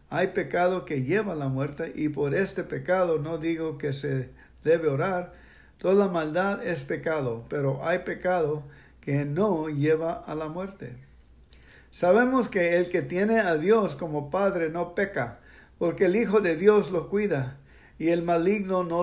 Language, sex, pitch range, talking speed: English, male, 155-200 Hz, 165 wpm